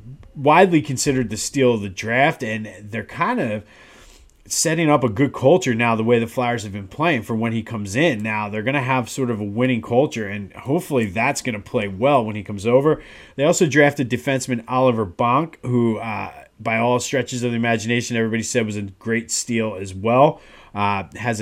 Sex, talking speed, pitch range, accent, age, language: male, 205 wpm, 110-130 Hz, American, 30-49, English